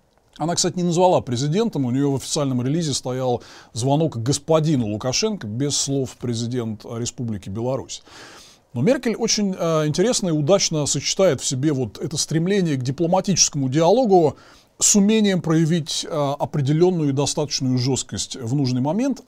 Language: Russian